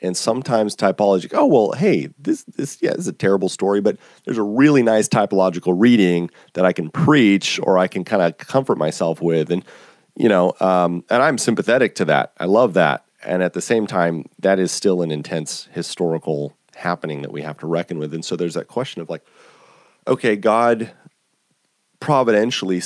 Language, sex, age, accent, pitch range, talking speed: English, male, 30-49, American, 85-105 Hz, 190 wpm